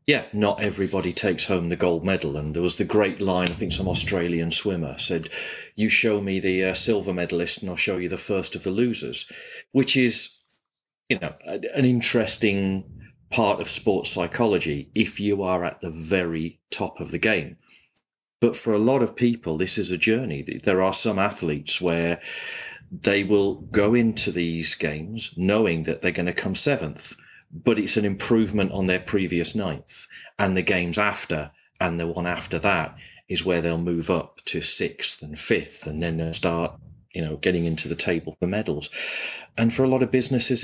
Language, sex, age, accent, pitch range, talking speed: English, male, 40-59, British, 85-105 Hz, 190 wpm